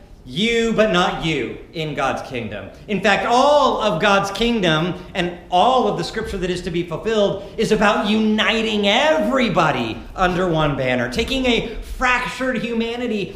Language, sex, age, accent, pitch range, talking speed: English, male, 40-59, American, 180-235 Hz, 155 wpm